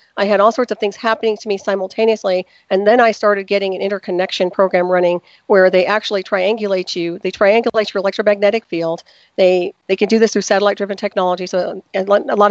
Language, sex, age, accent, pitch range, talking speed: English, female, 40-59, American, 185-210 Hz, 195 wpm